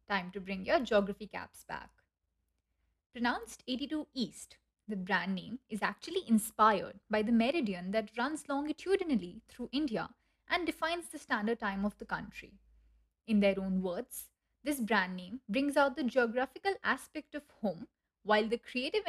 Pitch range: 195-275 Hz